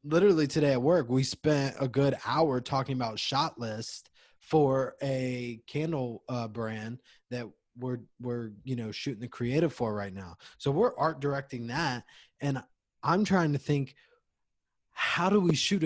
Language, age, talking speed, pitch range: English, 20-39, 165 wpm, 110-140 Hz